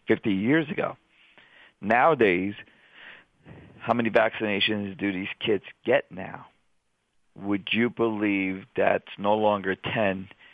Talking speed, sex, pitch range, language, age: 110 wpm, male, 95-105 Hz, English, 50-69